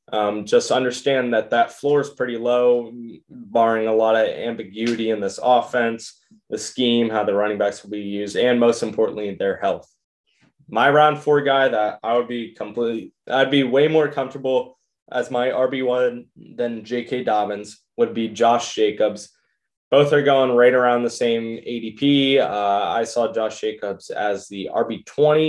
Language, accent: English, American